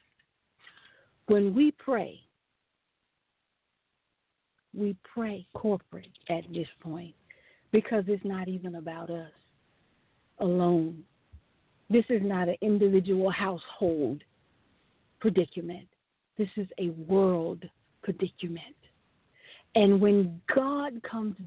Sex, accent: female, American